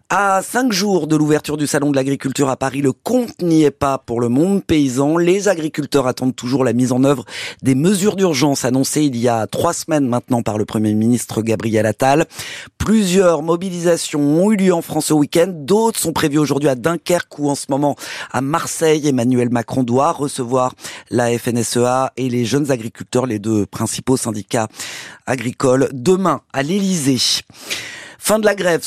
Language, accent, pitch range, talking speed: French, French, 125-165 Hz, 180 wpm